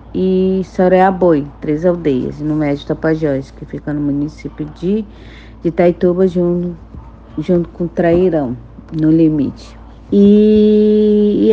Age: 50-69